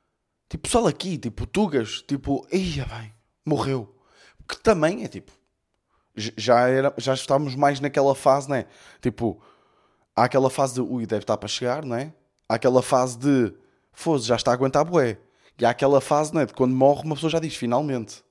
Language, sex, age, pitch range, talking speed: Portuguese, male, 20-39, 110-145 Hz, 195 wpm